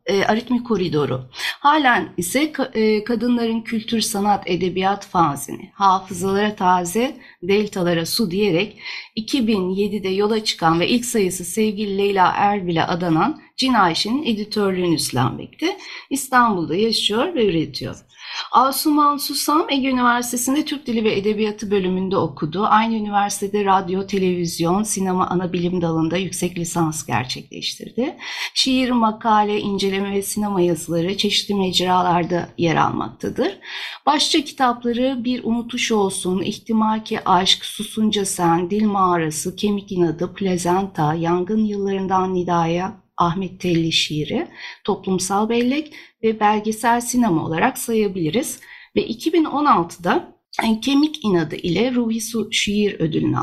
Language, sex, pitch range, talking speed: Turkish, female, 185-245 Hz, 110 wpm